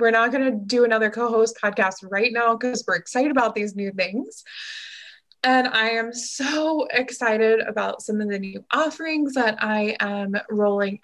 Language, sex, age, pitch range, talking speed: English, female, 20-39, 205-245 Hz, 175 wpm